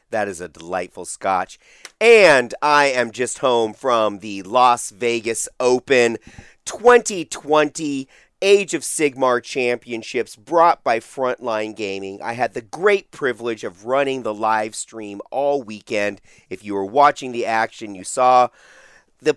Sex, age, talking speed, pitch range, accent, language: male, 30-49, 140 wpm, 105-140 Hz, American, English